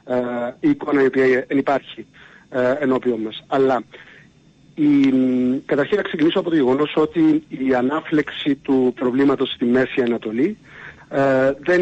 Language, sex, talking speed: Greek, male, 130 wpm